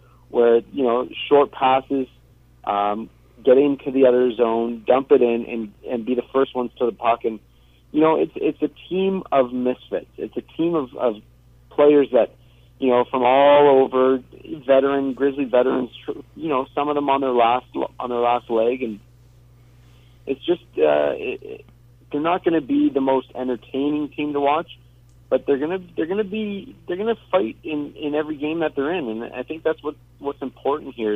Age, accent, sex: 40-59, American, male